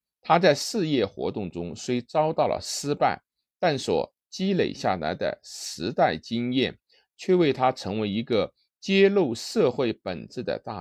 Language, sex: Chinese, male